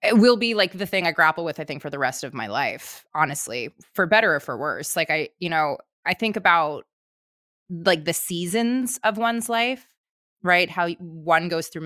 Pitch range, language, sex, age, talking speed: 155-195 Hz, English, female, 20-39, 210 wpm